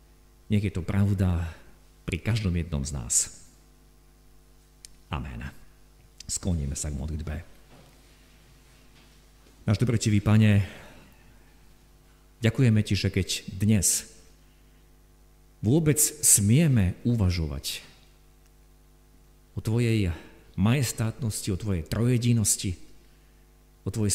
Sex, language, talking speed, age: male, Slovak, 80 wpm, 50-69